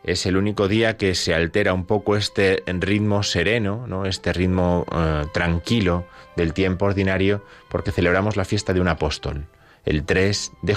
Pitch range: 85-100 Hz